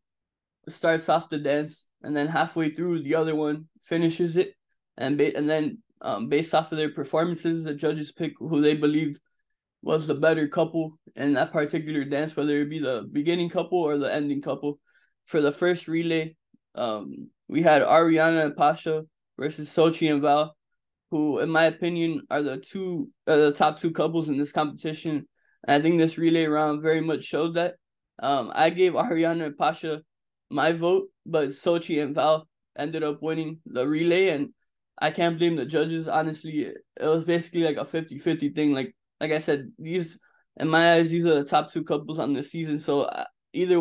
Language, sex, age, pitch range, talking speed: English, male, 20-39, 150-170 Hz, 185 wpm